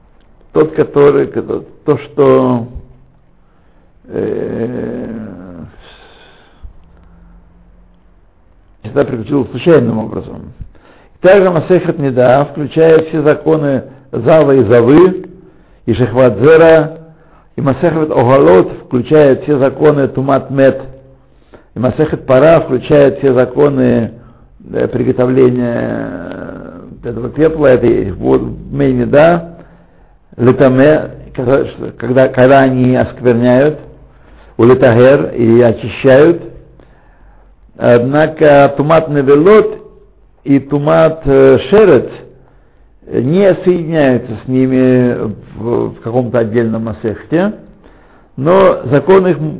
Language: Russian